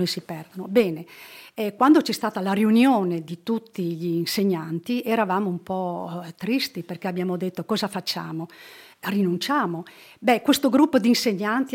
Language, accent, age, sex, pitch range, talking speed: Italian, native, 50-69, female, 185-255 Hz, 145 wpm